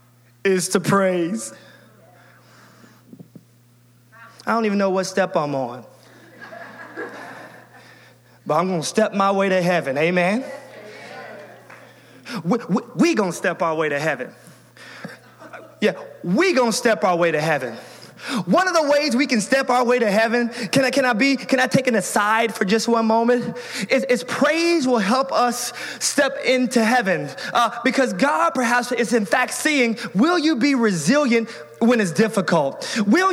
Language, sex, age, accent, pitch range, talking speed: English, male, 20-39, American, 200-265 Hz, 160 wpm